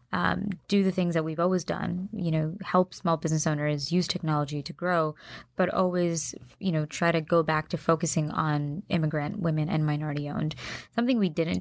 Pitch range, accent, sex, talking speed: 155-180 Hz, American, female, 190 wpm